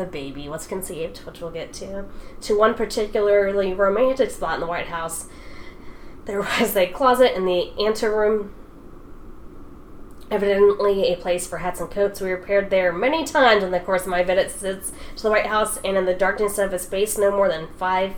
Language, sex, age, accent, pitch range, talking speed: English, female, 10-29, American, 175-205 Hz, 190 wpm